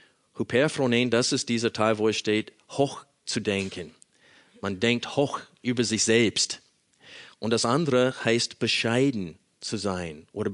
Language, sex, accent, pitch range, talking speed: German, male, German, 105-125 Hz, 140 wpm